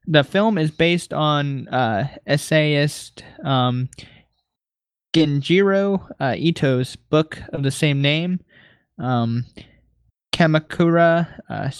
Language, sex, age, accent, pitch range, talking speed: English, male, 20-39, American, 135-160 Hz, 95 wpm